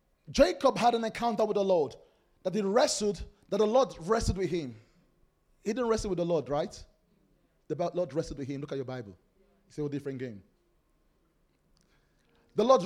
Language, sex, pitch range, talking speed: English, male, 165-230 Hz, 180 wpm